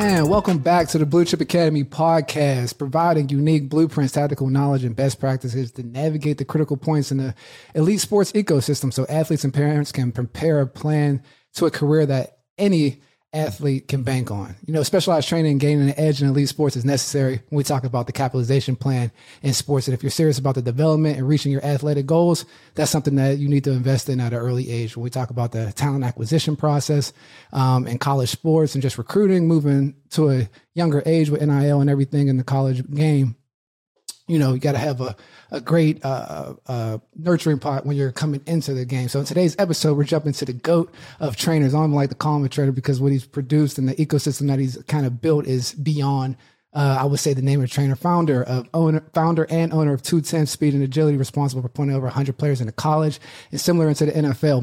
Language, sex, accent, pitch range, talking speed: English, male, American, 130-155 Hz, 220 wpm